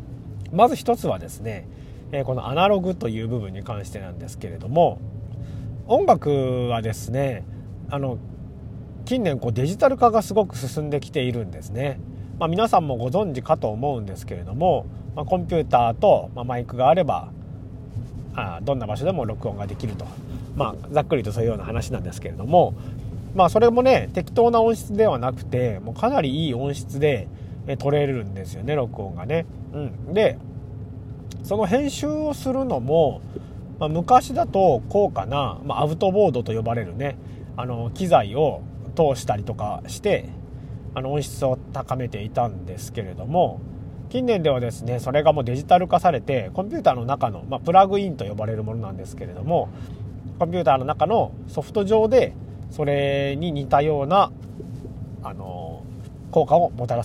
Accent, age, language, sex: native, 40-59, Japanese, male